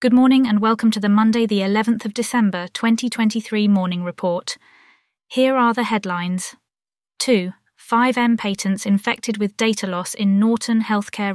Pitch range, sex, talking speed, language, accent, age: 195-230 Hz, female, 160 wpm, English, British, 30-49